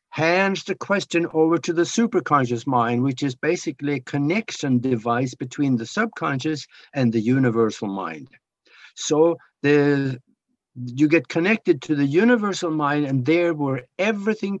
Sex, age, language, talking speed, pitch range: male, 60-79, English, 135 wpm, 140-185 Hz